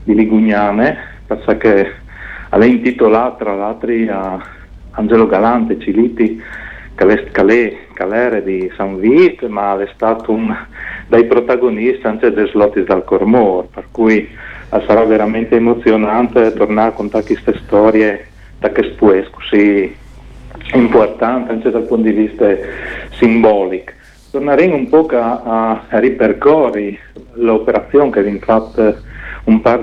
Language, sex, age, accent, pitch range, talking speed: Italian, male, 40-59, native, 100-120 Hz, 120 wpm